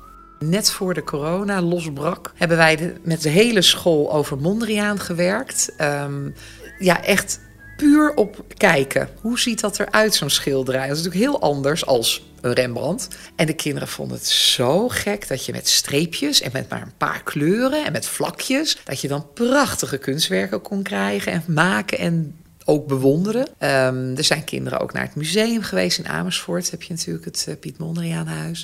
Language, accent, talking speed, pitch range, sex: Dutch, Dutch, 175 wpm, 145-195 Hz, female